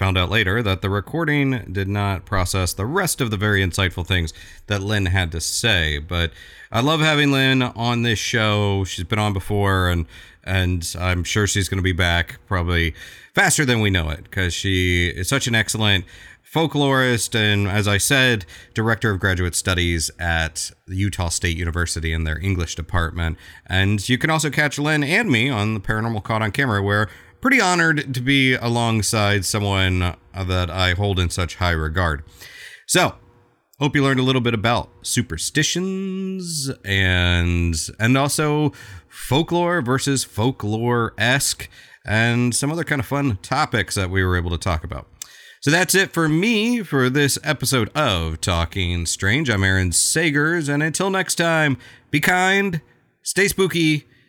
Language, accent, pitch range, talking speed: English, American, 90-135 Hz, 165 wpm